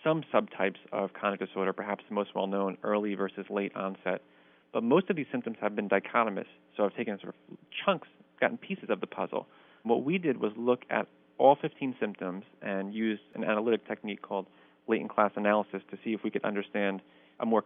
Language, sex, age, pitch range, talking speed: English, male, 30-49, 90-110 Hz, 195 wpm